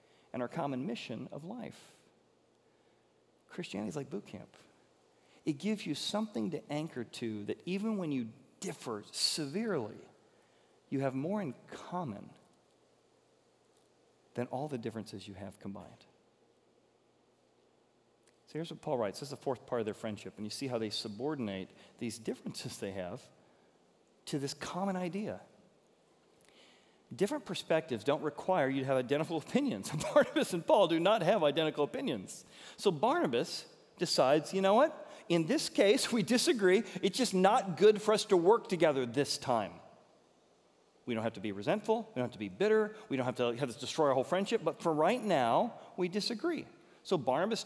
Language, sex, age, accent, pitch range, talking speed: English, male, 40-59, American, 130-210 Hz, 165 wpm